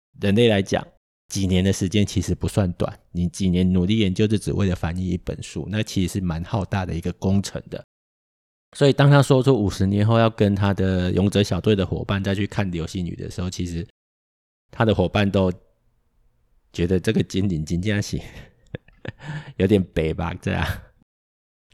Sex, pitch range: male, 90-110 Hz